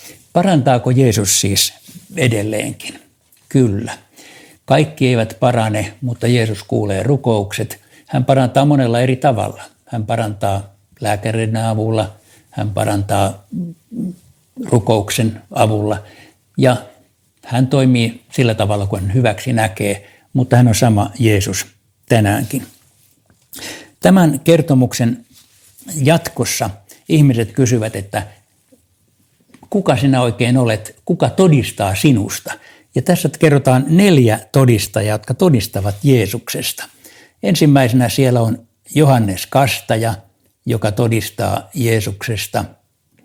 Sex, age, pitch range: male, 60-79, 105-130 Hz